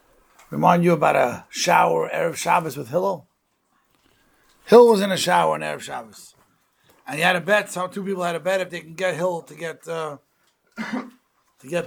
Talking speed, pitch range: 190 wpm, 150-195 Hz